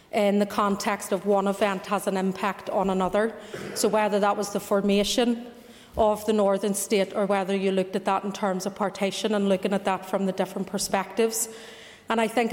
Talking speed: 200 wpm